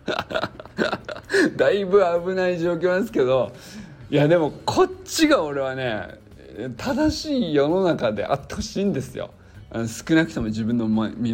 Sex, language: male, Japanese